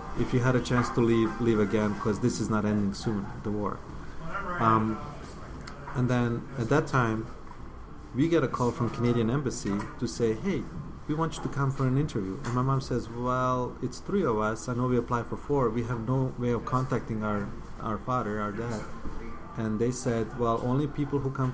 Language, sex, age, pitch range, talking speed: English, male, 30-49, 110-130 Hz, 210 wpm